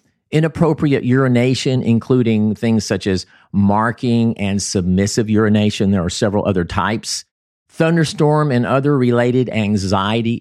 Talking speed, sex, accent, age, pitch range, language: 115 wpm, male, American, 50-69, 95-125 Hz, English